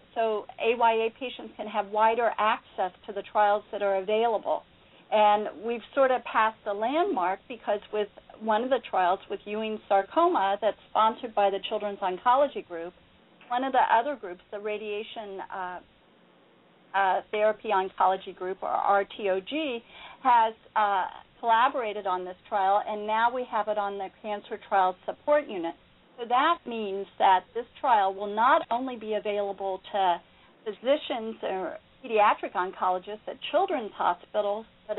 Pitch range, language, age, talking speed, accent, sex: 200-240 Hz, English, 50-69, 150 wpm, American, female